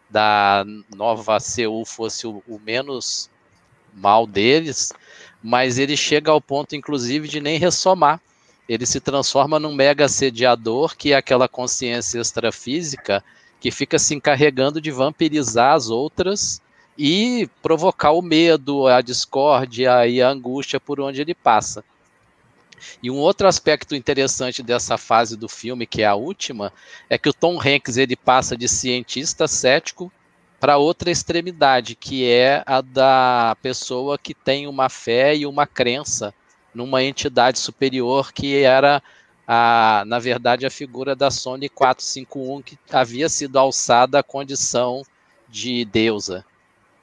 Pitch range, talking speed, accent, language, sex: 120-145 Hz, 140 wpm, Brazilian, Portuguese, male